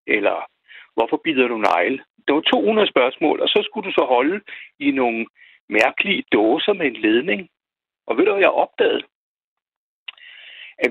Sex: male